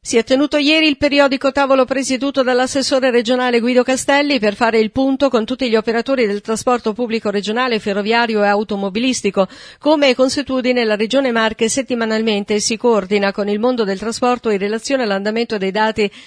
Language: Italian